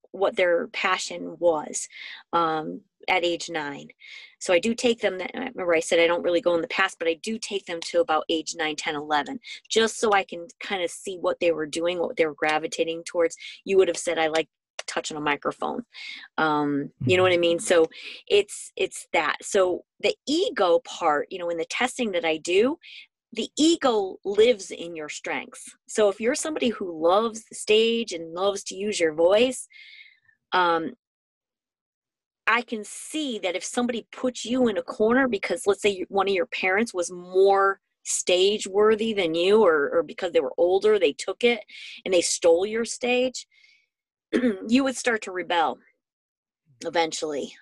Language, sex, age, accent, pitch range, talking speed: English, female, 20-39, American, 170-260 Hz, 185 wpm